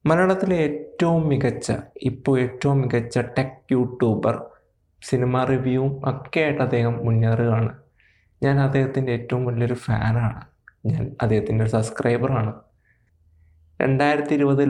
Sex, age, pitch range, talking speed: male, 20-39, 115-140 Hz, 100 wpm